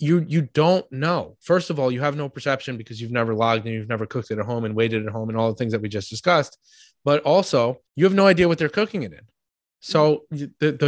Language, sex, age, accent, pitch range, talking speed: English, male, 20-39, American, 120-155 Hz, 260 wpm